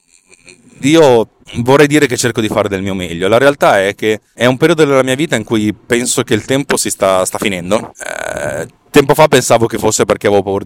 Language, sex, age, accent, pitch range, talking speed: Italian, male, 30-49, native, 100-125 Hz, 220 wpm